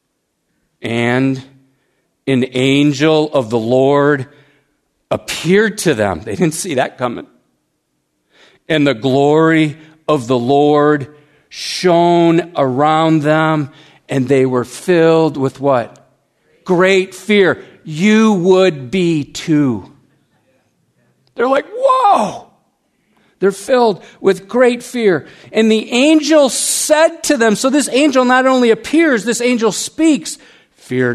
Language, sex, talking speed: English, male, 115 wpm